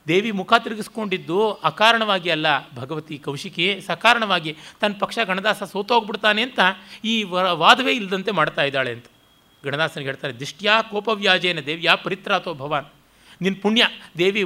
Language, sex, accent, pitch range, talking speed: Kannada, male, native, 155-215 Hz, 120 wpm